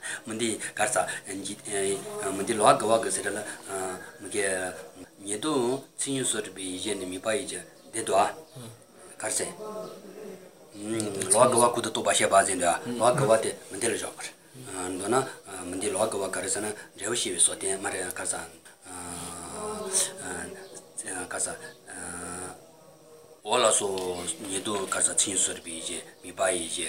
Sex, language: male, English